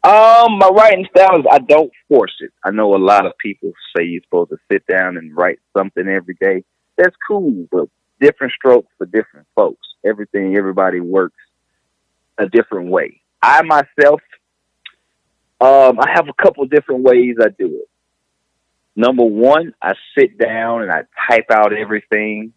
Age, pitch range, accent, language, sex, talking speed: 30-49, 95-140 Hz, American, English, male, 165 wpm